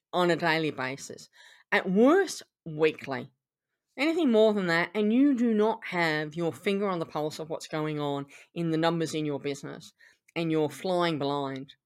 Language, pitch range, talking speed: English, 160-220 Hz, 175 wpm